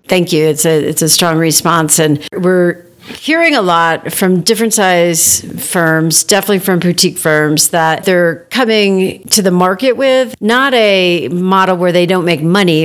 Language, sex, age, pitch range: English, female, 50-69, 170-210 Hz